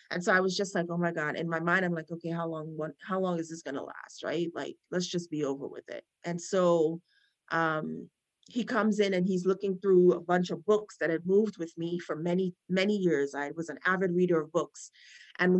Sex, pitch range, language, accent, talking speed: female, 170-200 Hz, English, American, 245 wpm